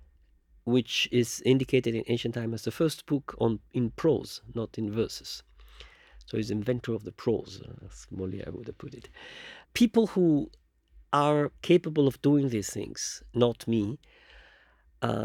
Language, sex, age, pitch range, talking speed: English, male, 50-69, 105-130 Hz, 155 wpm